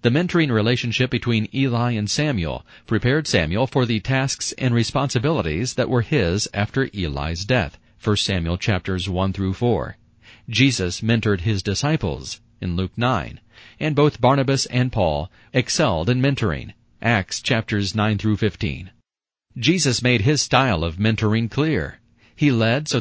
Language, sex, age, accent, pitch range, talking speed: English, male, 40-59, American, 100-130 Hz, 145 wpm